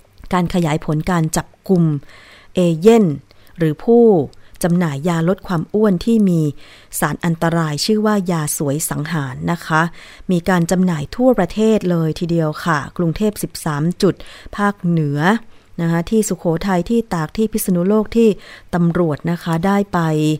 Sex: female